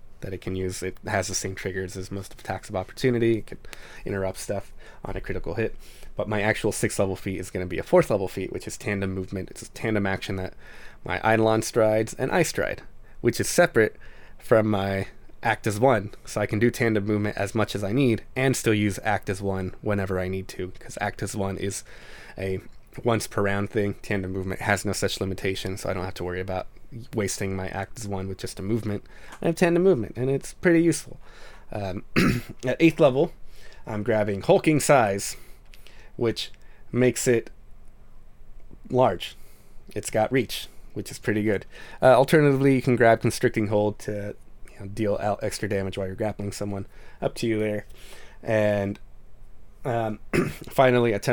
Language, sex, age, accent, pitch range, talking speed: English, male, 20-39, American, 95-120 Hz, 190 wpm